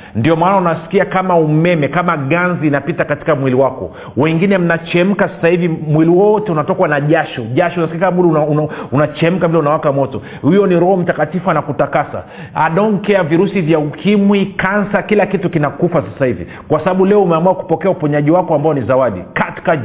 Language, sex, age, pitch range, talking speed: Swahili, male, 40-59, 155-190 Hz, 170 wpm